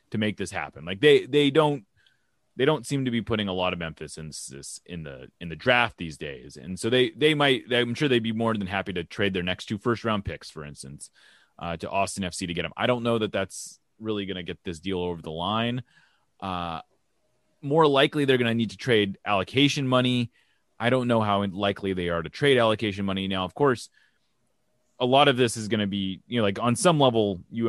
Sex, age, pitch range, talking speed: male, 30-49, 95-125 Hz, 235 wpm